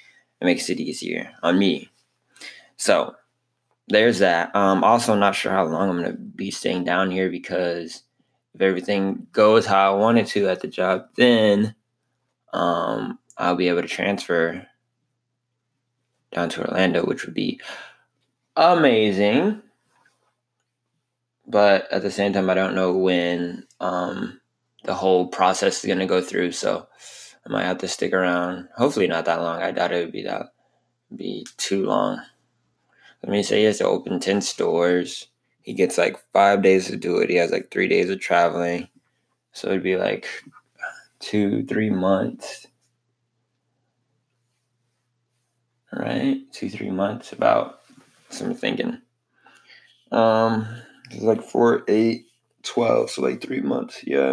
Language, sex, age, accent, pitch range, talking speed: English, male, 20-39, American, 95-120 Hz, 150 wpm